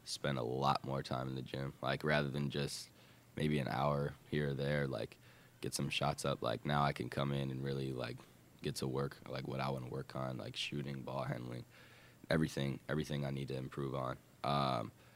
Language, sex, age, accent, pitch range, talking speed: English, male, 10-29, American, 70-75 Hz, 215 wpm